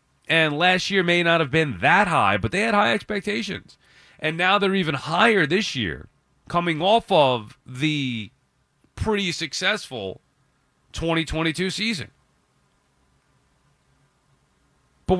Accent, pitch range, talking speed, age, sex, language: American, 130-185 Hz, 120 wpm, 30-49, male, English